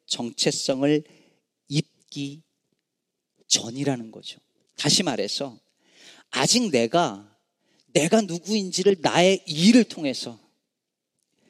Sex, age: male, 40-59